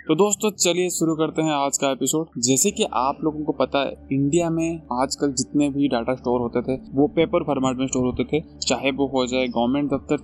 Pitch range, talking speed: 135-160 Hz, 225 wpm